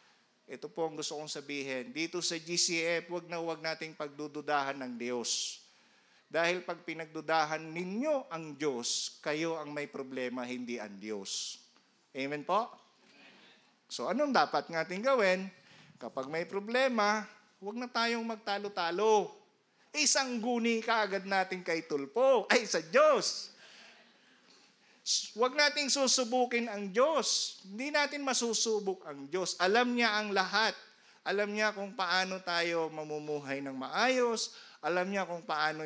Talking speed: 130 wpm